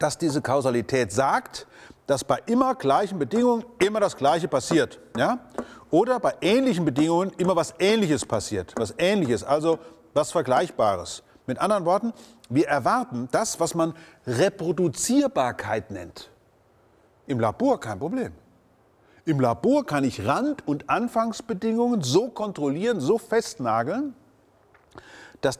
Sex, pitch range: male, 140-230 Hz